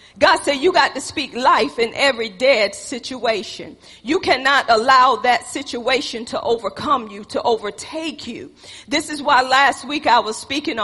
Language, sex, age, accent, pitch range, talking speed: English, female, 40-59, American, 235-320 Hz, 165 wpm